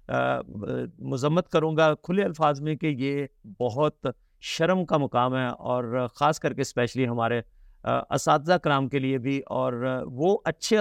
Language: English